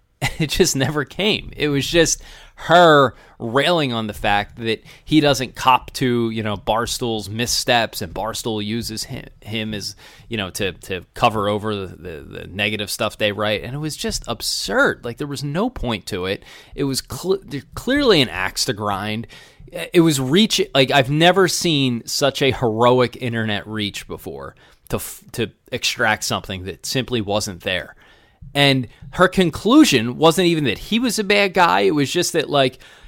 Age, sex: 20-39, male